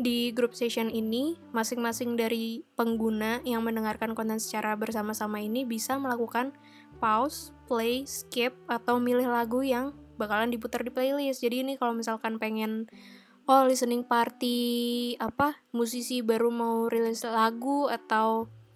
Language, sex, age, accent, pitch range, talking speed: Indonesian, female, 20-39, native, 220-255 Hz, 130 wpm